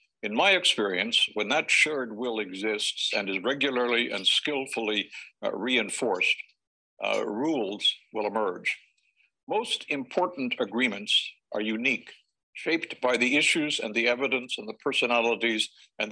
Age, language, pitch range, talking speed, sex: 60-79, English, 115-145 Hz, 130 wpm, male